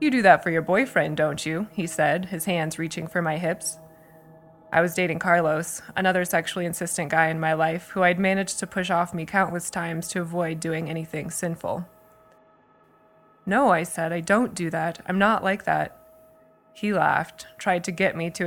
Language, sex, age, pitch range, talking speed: English, female, 20-39, 165-195 Hz, 190 wpm